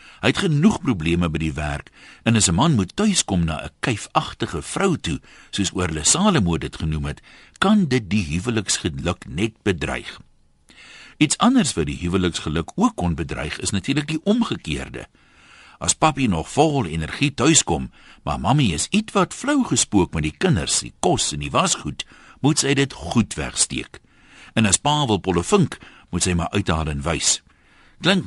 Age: 60-79